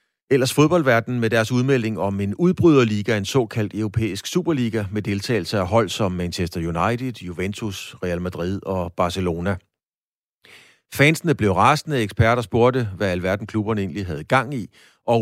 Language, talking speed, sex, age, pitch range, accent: Danish, 145 wpm, male, 40-59, 100-125 Hz, native